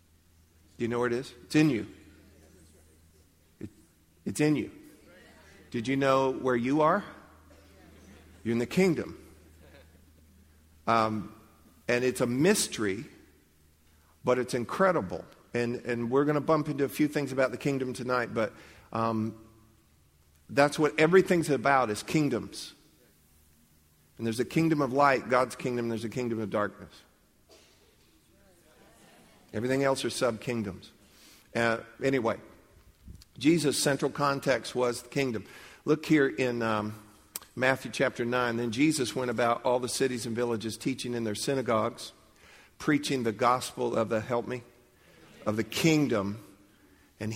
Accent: American